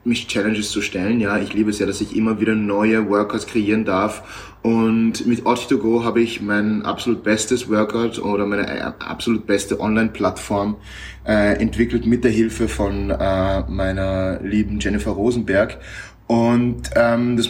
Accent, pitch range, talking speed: German, 105-115 Hz, 145 wpm